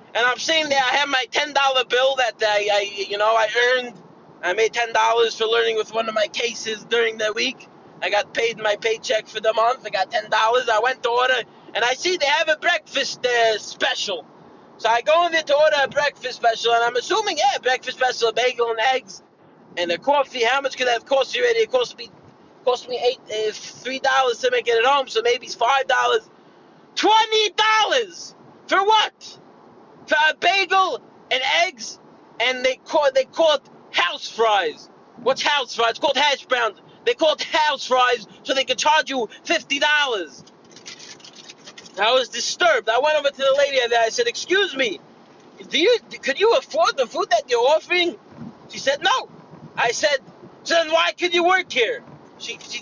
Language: English